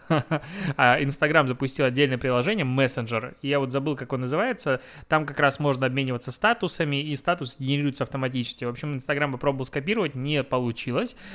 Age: 20-39